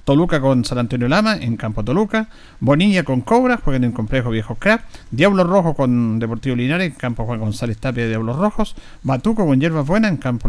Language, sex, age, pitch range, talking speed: Spanish, male, 50-69, 120-170 Hz, 205 wpm